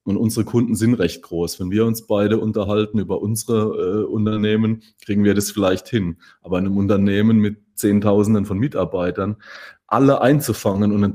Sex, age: male, 30-49